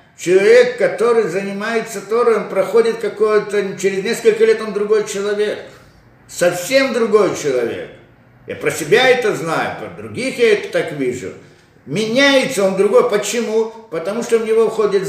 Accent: native